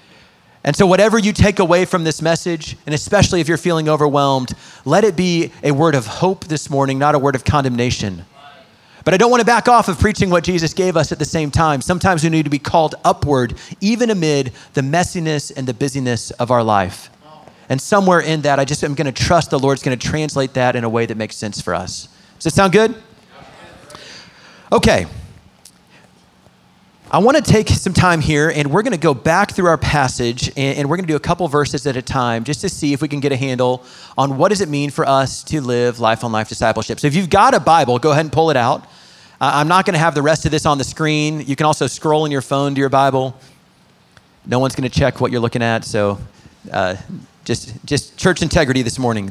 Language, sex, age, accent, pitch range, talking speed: English, male, 30-49, American, 130-170 Hz, 230 wpm